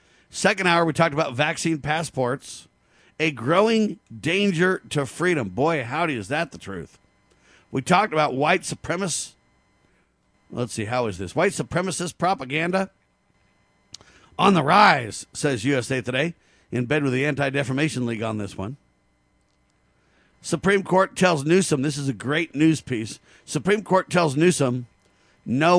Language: English